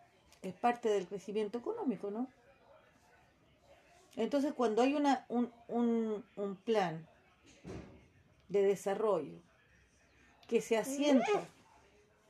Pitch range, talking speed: 210-245 Hz, 95 wpm